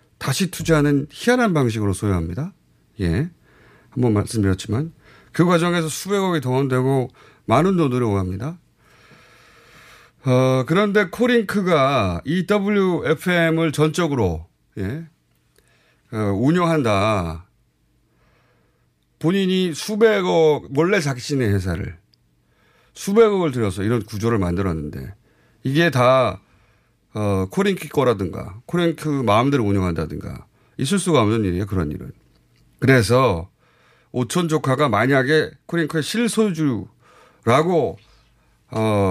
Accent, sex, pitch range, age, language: native, male, 100-165 Hz, 30-49, Korean